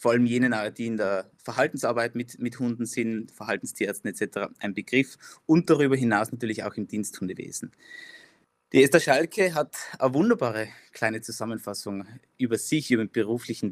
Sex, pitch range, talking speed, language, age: male, 110-130 Hz, 150 wpm, German, 20-39